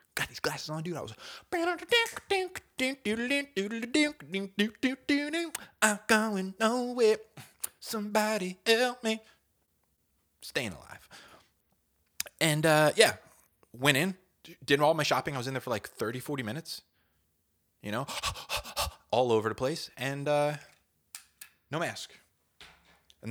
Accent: American